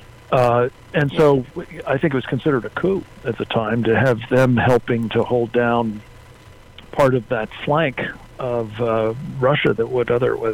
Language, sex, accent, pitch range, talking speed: English, male, American, 115-135 Hz, 170 wpm